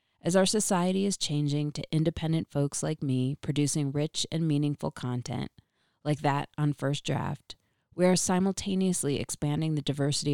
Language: English